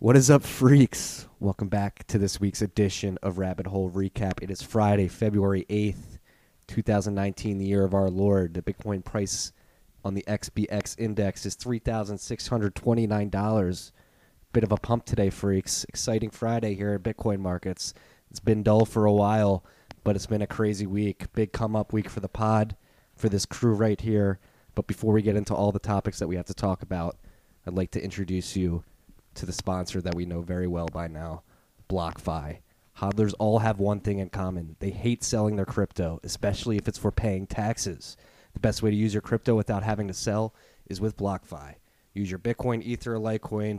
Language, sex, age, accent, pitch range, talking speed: English, male, 20-39, American, 95-115 Hz, 190 wpm